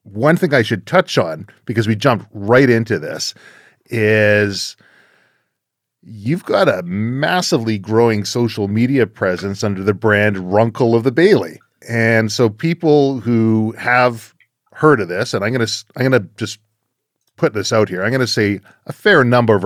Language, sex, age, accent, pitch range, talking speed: English, male, 40-59, American, 100-120 Hz, 170 wpm